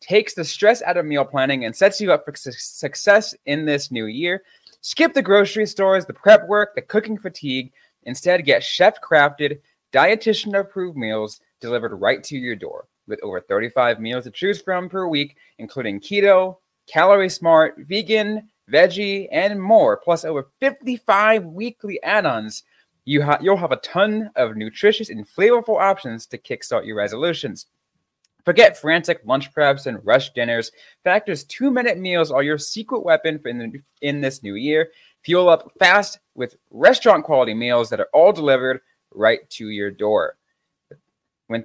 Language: English